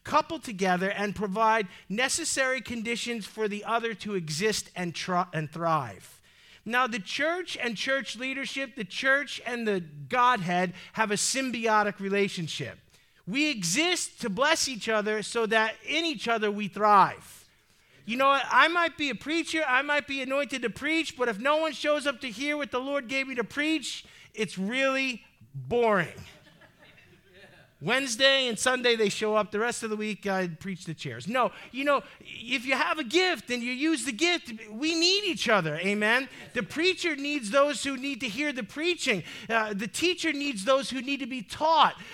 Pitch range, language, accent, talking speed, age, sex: 210-290 Hz, English, American, 180 wpm, 50-69, male